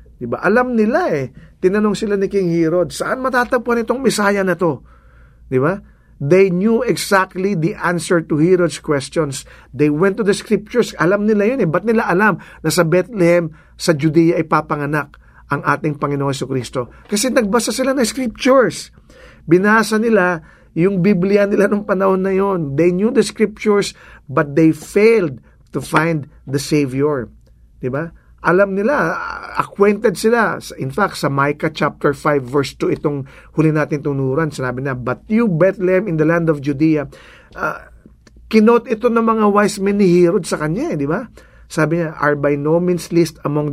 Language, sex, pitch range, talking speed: English, male, 150-205 Hz, 165 wpm